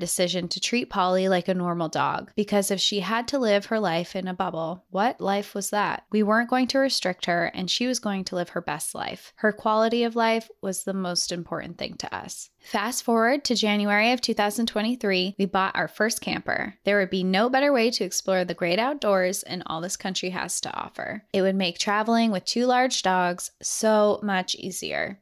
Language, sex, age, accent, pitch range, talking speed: English, female, 20-39, American, 180-215 Hz, 210 wpm